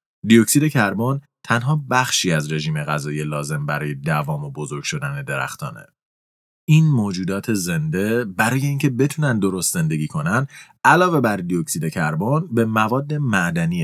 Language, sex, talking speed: Persian, male, 130 wpm